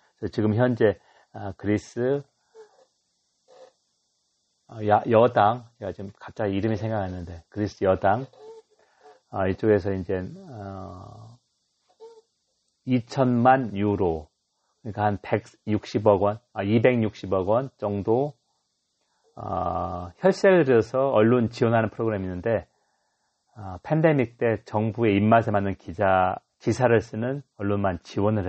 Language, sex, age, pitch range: Korean, male, 40-59, 100-130 Hz